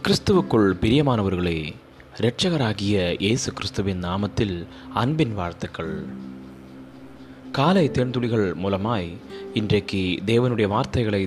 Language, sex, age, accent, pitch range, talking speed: Tamil, male, 30-49, native, 90-125 Hz, 75 wpm